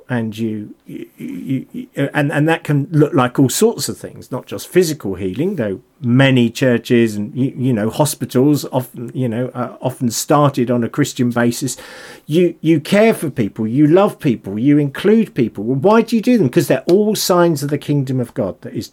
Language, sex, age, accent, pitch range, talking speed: English, male, 50-69, British, 130-195 Hz, 205 wpm